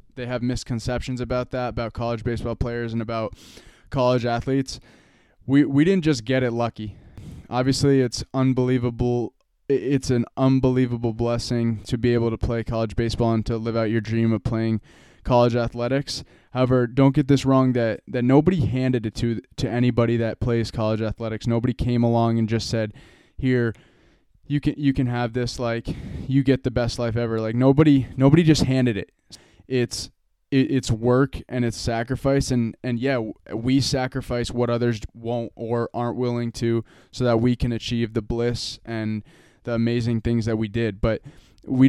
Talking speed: 175 wpm